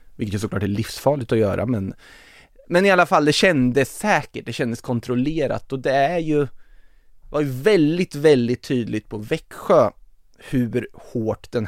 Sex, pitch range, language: male, 110-135 Hz, Swedish